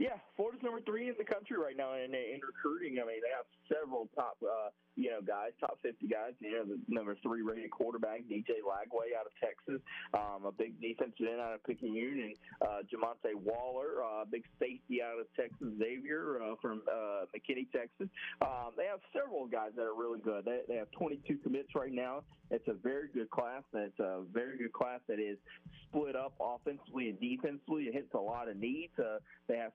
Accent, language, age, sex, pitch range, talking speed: American, English, 30-49, male, 115-165 Hz, 210 wpm